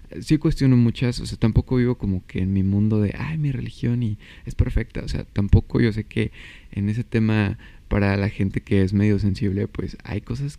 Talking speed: 215 wpm